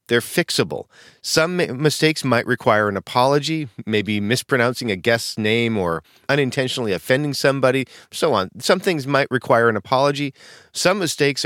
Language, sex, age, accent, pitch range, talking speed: English, male, 40-59, American, 110-140 Hz, 140 wpm